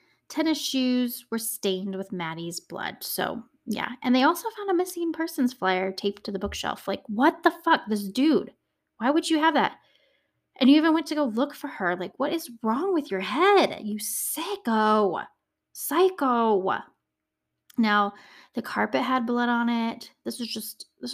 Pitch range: 190-260 Hz